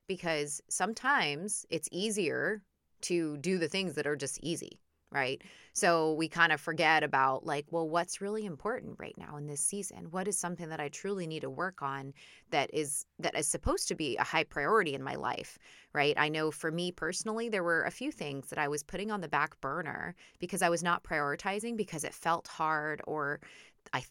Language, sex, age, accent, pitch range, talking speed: English, female, 20-39, American, 150-180 Hz, 200 wpm